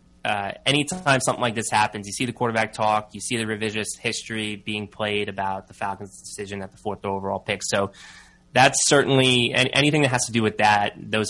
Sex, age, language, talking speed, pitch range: male, 20-39, English, 200 wpm, 100-120 Hz